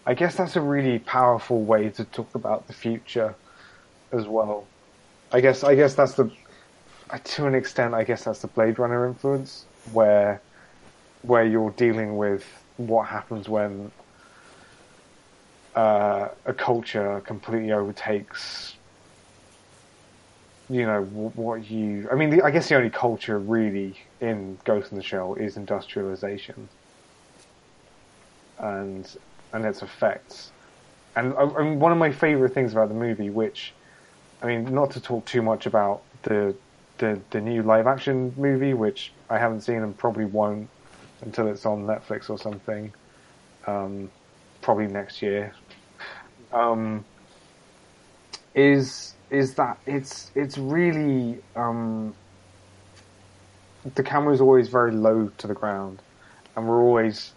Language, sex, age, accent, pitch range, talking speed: English, male, 20-39, British, 105-125 Hz, 135 wpm